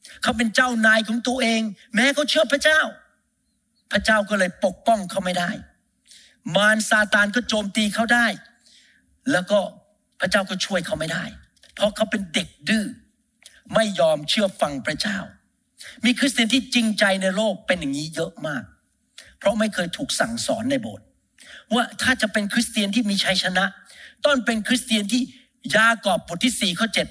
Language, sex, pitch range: Thai, male, 200-245 Hz